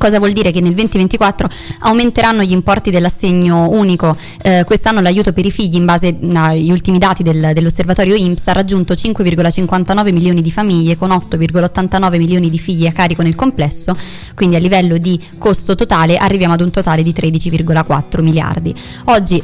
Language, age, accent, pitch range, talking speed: Italian, 20-39, native, 165-195 Hz, 165 wpm